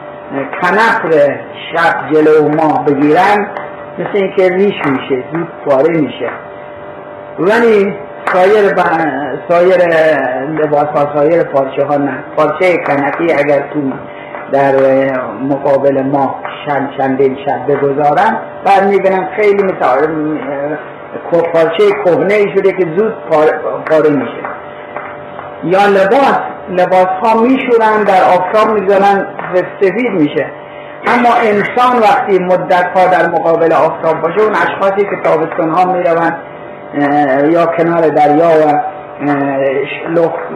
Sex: male